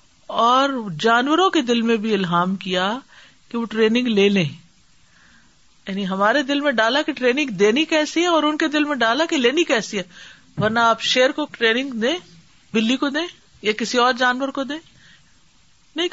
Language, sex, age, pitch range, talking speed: Urdu, female, 50-69, 180-250 Hz, 185 wpm